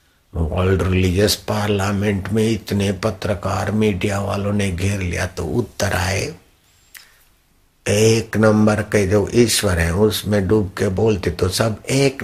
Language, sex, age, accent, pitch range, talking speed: Hindi, male, 60-79, native, 80-105 Hz, 130 wpm